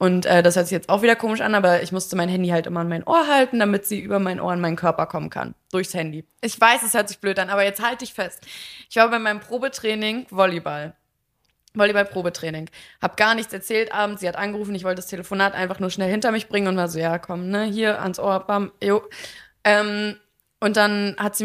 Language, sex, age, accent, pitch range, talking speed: German, female, 20-39, German, 180-210 Hz, 240 wpm